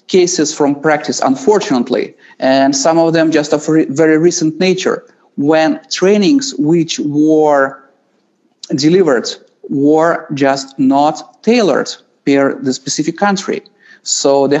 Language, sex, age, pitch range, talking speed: English, male, 30-49, 145-205 Hz, 115 wpm